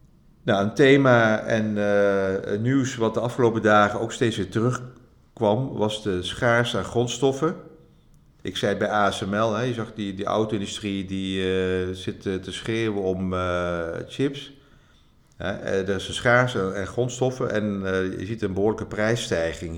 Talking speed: 165 wpm